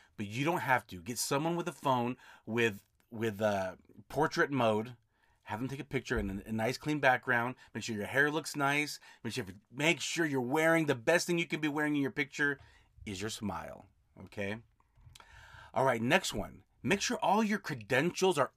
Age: 30-49